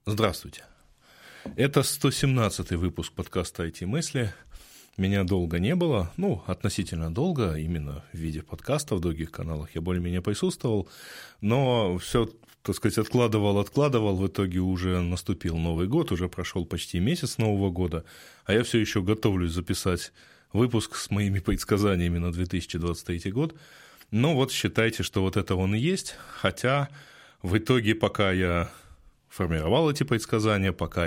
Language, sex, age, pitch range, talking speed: Russian, male, 20-39, 85-115 Hz, 140 wpm